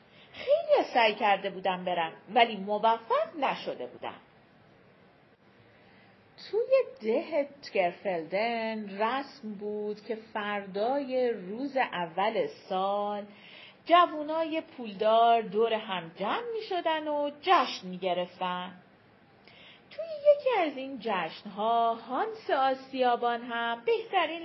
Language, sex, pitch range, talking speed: Persian, female, 220-355 Hz, 95 wpm